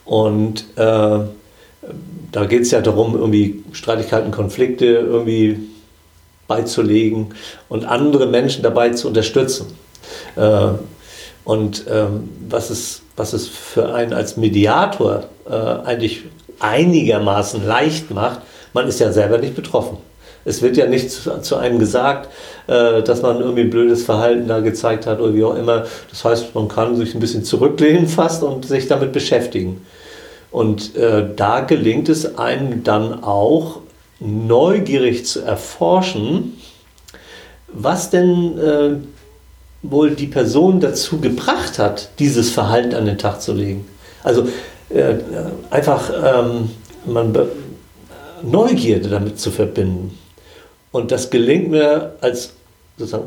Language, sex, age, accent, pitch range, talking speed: German, male, 50-69, German, 110-145 Hz, 135 wpm